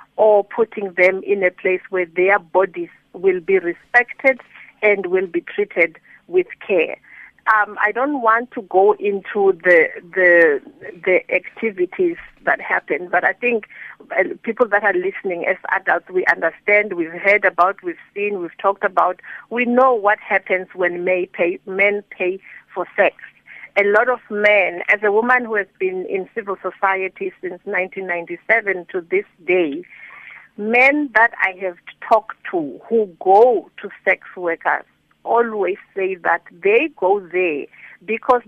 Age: 50-69